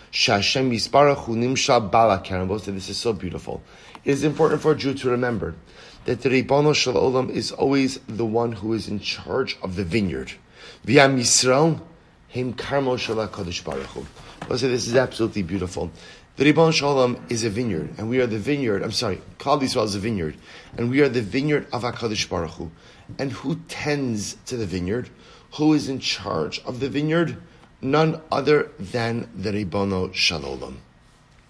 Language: English